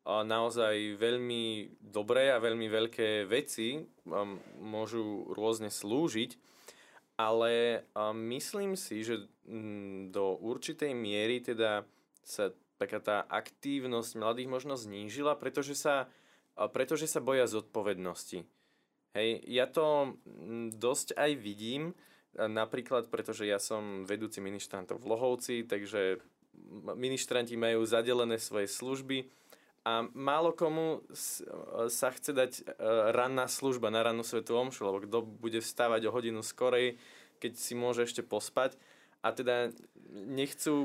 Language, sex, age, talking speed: Slovak, male, 20-39, 115 wpm